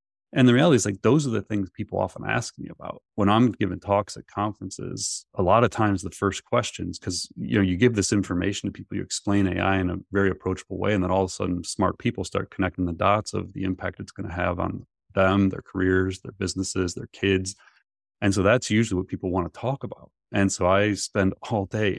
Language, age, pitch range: English, 30-49, 90-105 Hz